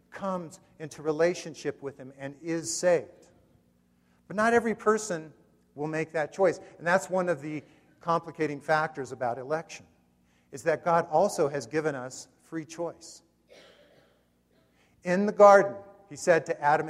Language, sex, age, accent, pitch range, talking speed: English, male, 50-69, American, 120-175 Hz, 145 wpm